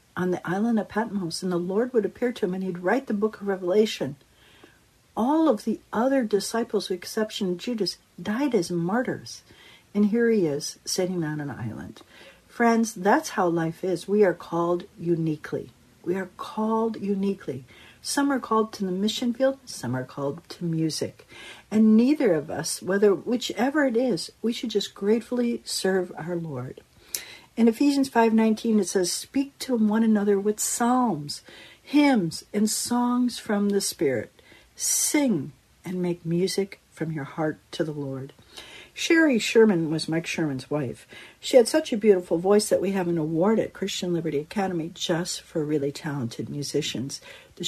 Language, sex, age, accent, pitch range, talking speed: English, female, 60-79, American, 165-230 Hz, 165 wpm